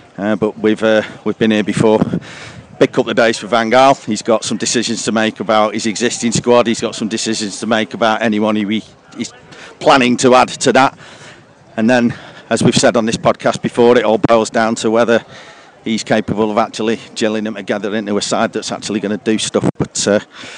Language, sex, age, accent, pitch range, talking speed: English, male, 40-59, British, 105-115 Hz, 220 wpm